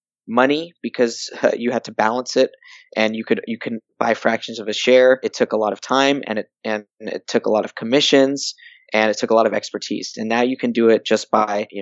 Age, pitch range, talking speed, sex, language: 20-39, 105-125 Hz, 250 wpm, male, English